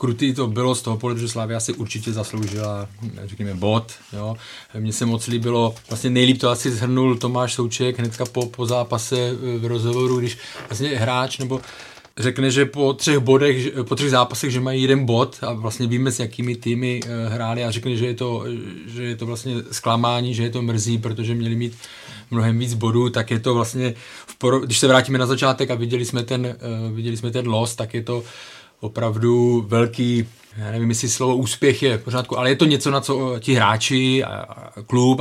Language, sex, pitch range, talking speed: Czech, male, 110-125 Hz, 185 wpm